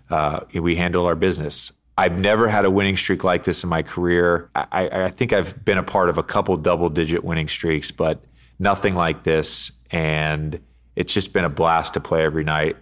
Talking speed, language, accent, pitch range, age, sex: 200 wpm, English, American, 75-85 Hz, 30-49, male